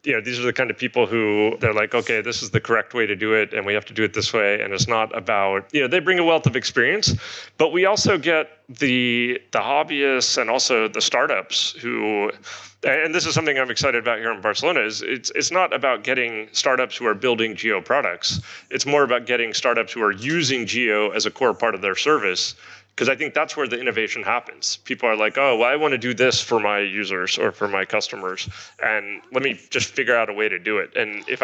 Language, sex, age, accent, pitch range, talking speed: English, male, 30-49, American, 110-150 Hz, 245 wpm